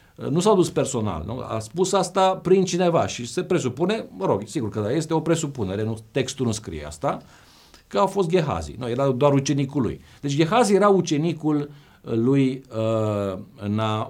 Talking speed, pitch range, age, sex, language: 175 wpm, 105-160 Hz, 50-69, male, Romanian